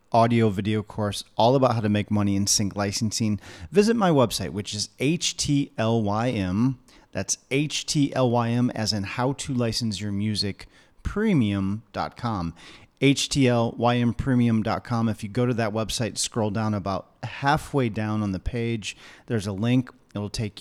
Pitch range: 105-125 Hz